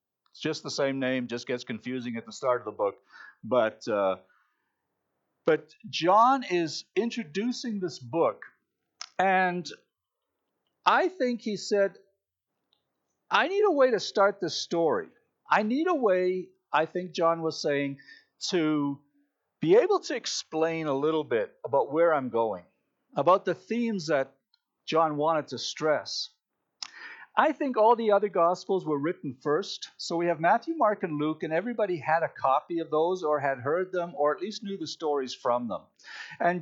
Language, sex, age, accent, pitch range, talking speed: English, male, 50-69, American, 150-215 Hz, 165 wpm